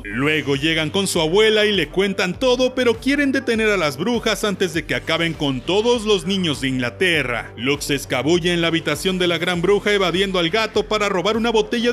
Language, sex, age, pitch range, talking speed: Spanish, male, 40-59, 160-225 Hz, 210 wpm